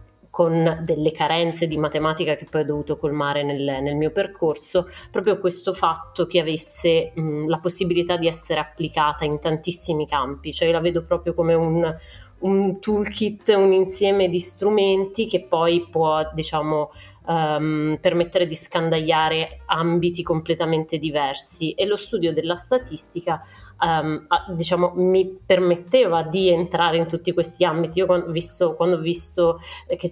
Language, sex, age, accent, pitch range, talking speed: Italian, female, 30-49, native, 155-180 Hz, 145 wpm